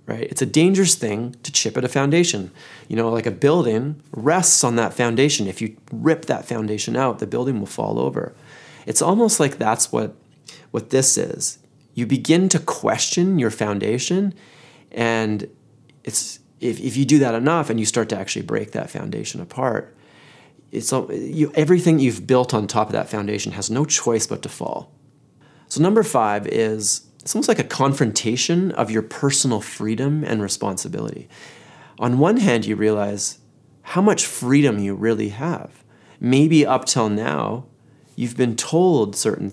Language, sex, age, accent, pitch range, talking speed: English, male, 30-49, American, 110-150 Hz, 170 wpm